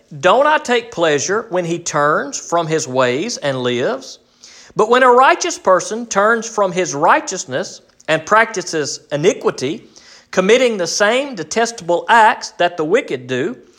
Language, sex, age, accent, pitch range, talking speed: English, male, 40-59, American, 160-255 Hz, 145 wpm